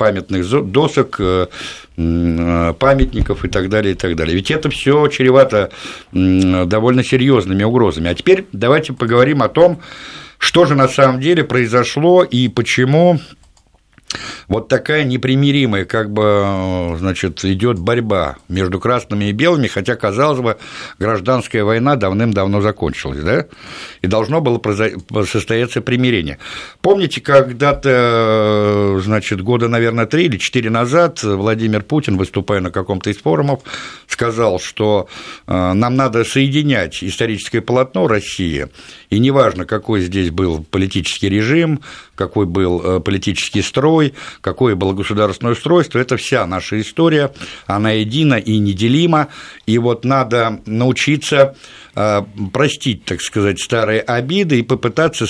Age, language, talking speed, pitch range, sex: 60-79, Russian, 125 wpm, 100-135 Hz, male